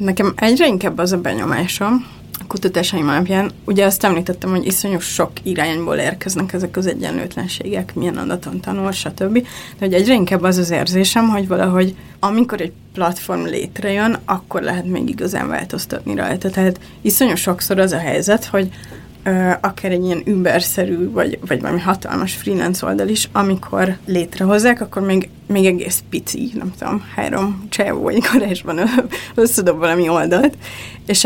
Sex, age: female, 20-39